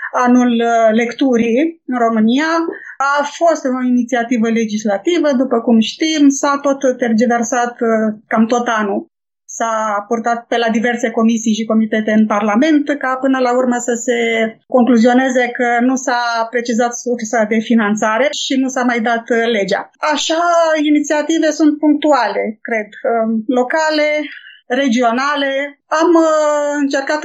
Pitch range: 235-285 Hz